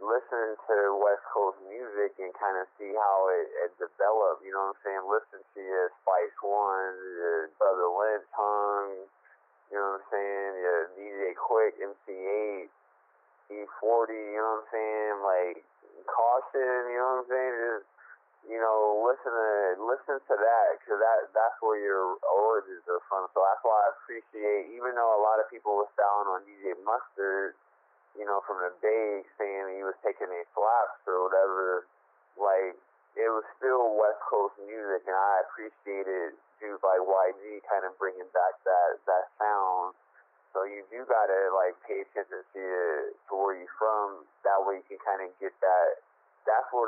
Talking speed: 175 wpm